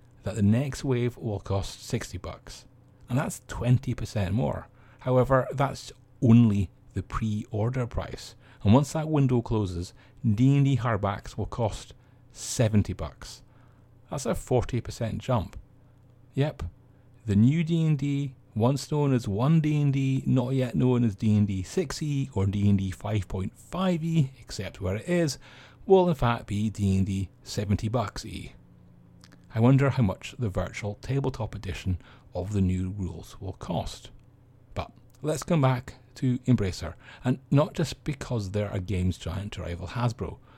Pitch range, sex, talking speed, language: 100-130 Hz, male, 140 wpm, English